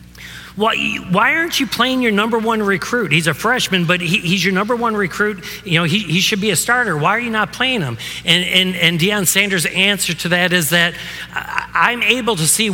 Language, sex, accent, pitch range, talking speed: English, male, American, 155-220 Hz, 220 wpm